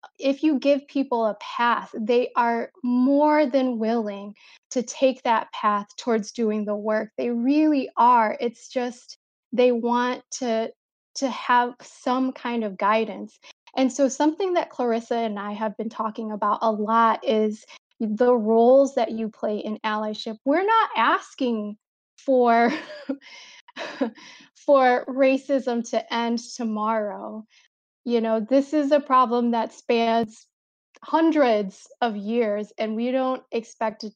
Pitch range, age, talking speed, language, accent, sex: 225-265 Hz, 10-29, 140 wpm, English, American, female